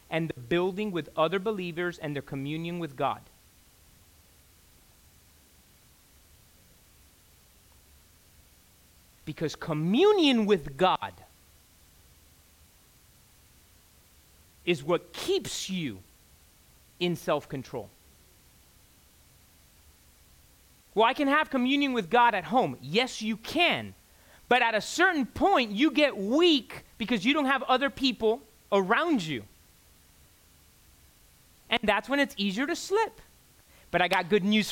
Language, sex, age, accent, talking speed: English, male, 30-49, American, 105 wpm